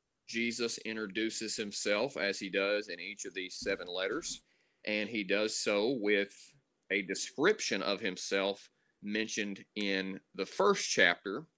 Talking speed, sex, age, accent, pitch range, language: 135 wpm, male, 30-49, American, 95-110 Hz, English